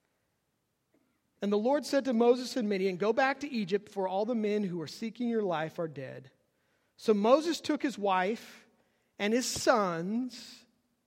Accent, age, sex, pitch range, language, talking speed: American, 40-59, male, 155-250 Hz, English, 170 wpm